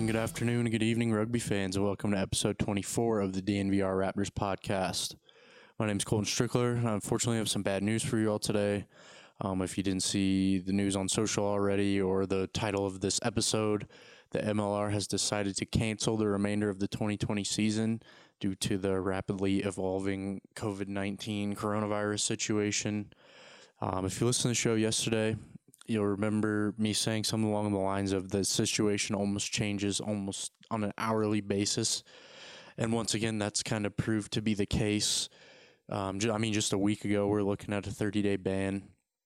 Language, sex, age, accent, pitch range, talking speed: English, male, 20-39, American, 100-110 Hz, 185 wpm